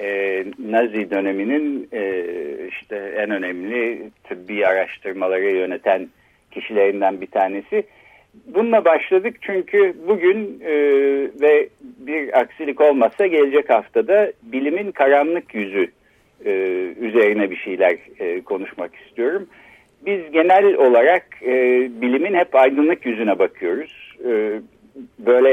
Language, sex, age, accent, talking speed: Turkish, male, 60-79, native, 90 wpm